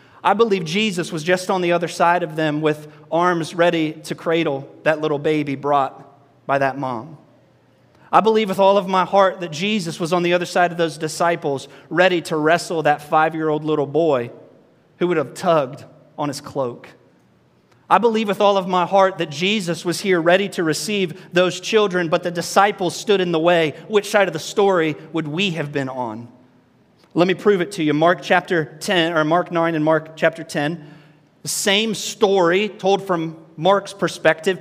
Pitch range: 155-205 Hz